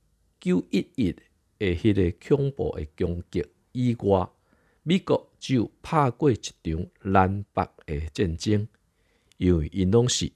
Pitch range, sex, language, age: 90-130 Hz, male, Chinese, 50-69